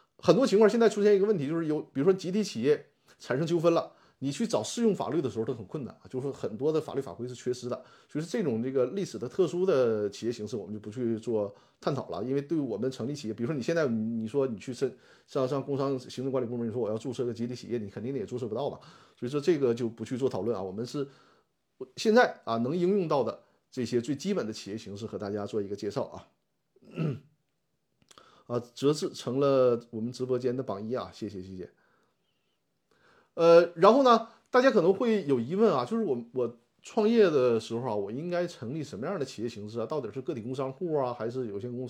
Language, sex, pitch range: Chinese, male, 120-170 Hz